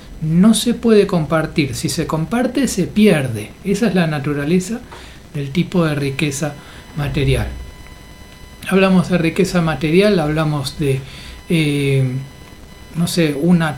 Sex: male